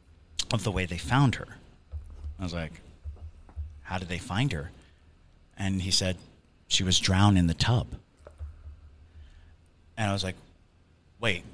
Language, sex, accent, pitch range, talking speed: English, male, American, 80-105 Hz, 145 wpm